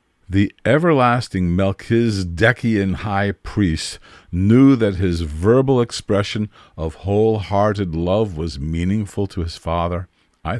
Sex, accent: male, American